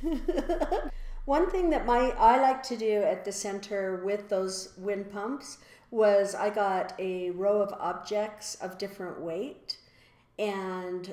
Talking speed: 140 wpm